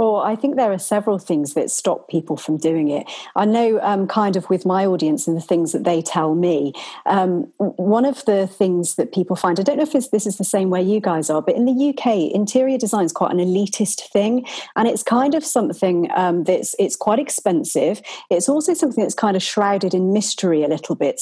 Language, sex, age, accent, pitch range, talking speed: English, female, 40-59, British, 180-235 Hz, 225 wpm